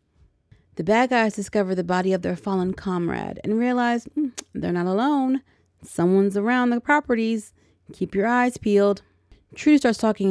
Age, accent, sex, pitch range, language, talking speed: 30-49, American, female, 180-250 Hz, English, 155 wpm